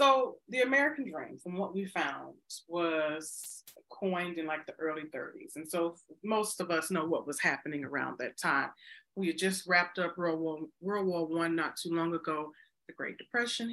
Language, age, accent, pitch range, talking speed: English, 30-49, American, 170-230 Hz, 190 wpm